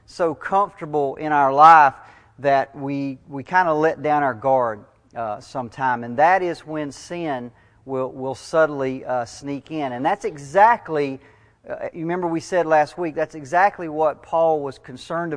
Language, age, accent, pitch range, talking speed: English, 40-59, American, 130-160 Hz, 170 wpm